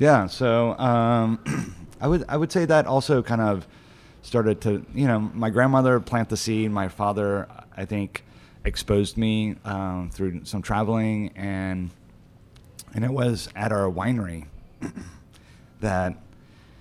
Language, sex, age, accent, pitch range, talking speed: English, male, 30-49, American, 90-110 Hz, 140 wpm